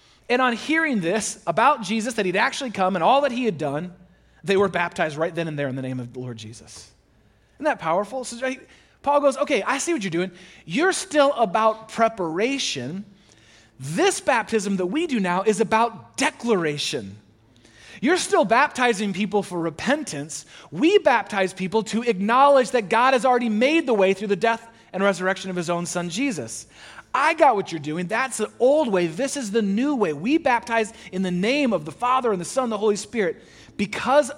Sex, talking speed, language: male, 195 wpm, English